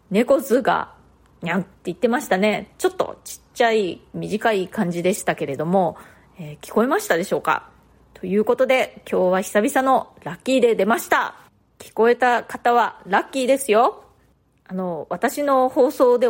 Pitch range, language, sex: 185-240 Hz, Japanese, female